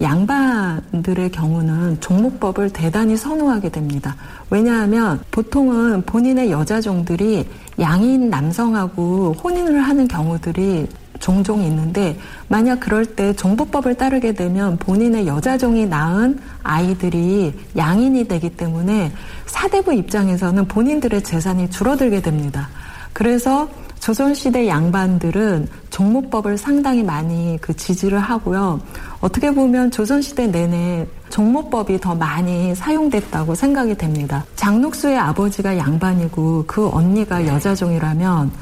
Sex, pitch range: female, 165-225 Hz